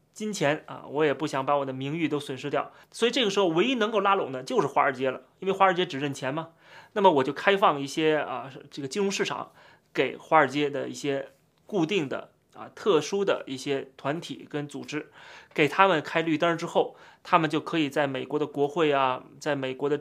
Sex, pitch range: male, 145-195 Hz